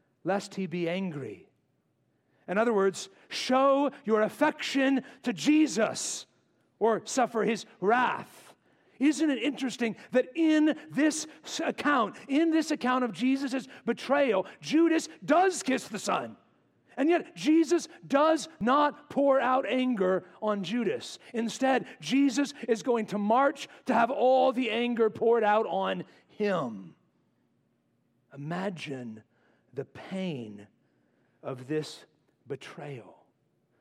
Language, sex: English, male